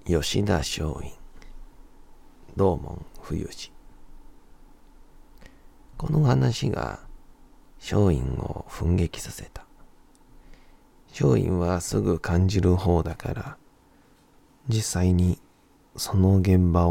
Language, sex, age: Japanese, male, 40-59